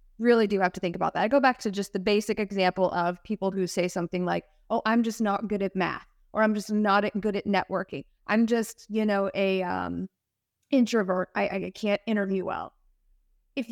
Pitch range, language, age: 185-235 Hz, English, 20-39